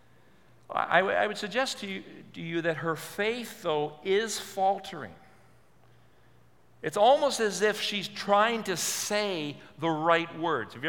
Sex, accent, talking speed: male, American, 155 wpm